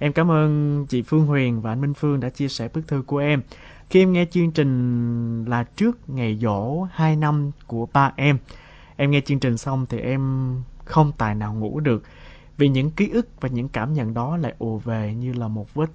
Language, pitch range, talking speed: Vietnamese, 120-150 Hz, 220 wpm